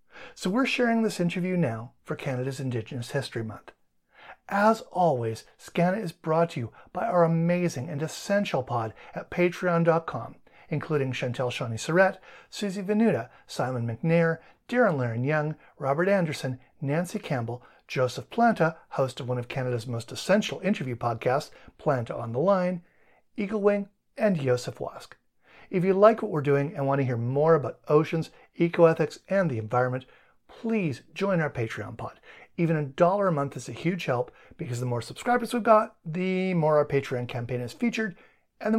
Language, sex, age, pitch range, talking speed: English, male, 50-69, 130-185 Hz, 165 wpm